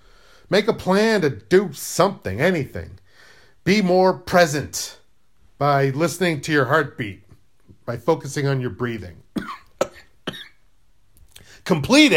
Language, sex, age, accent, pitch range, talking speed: English, male, 40-59, American, 115-185 Hz, 105 wpm